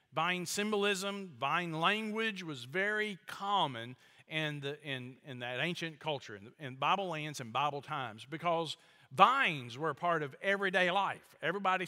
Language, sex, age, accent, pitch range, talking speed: English, male, 50-69, American, 145-200 Hz, 155 wpm